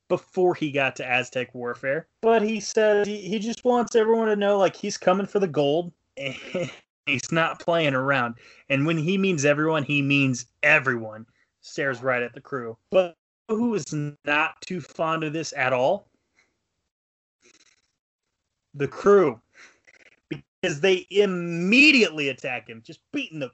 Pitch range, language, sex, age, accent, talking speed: 135-195 Hz, English, male, 20-39, American, 150 wpm